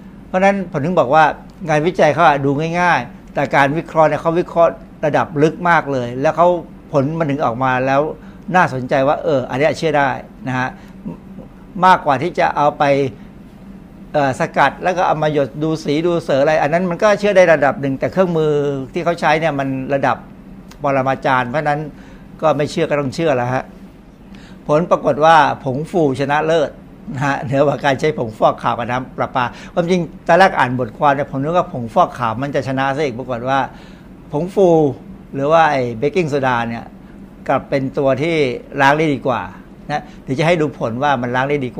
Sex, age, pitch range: male, 60-79, 135-175 Hz